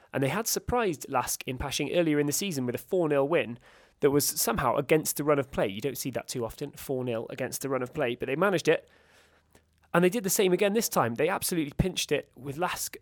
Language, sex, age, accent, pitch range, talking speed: English, male, 20-39, British, 130-160 Hz, 245 wpm